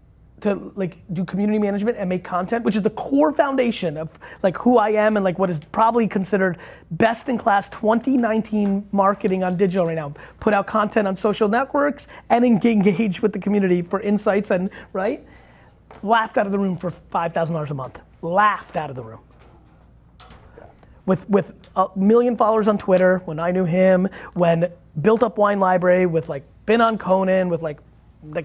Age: 30-49